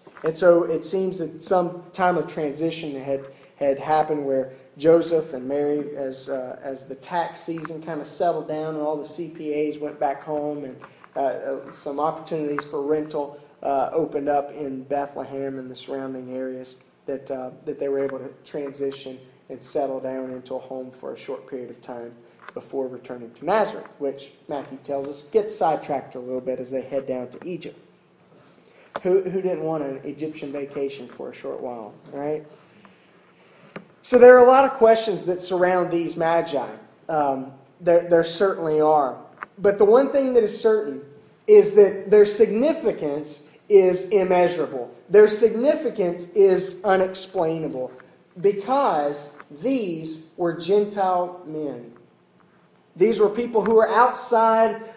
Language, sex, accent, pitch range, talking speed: English, male, American, 140-190 Hz, 155 wpm